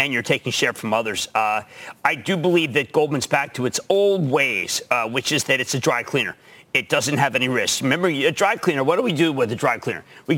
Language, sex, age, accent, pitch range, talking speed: English, male, 50-69, American, 165-210 Hz, 250 wpm